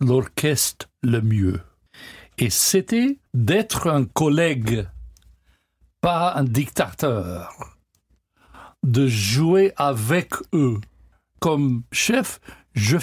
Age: 60-79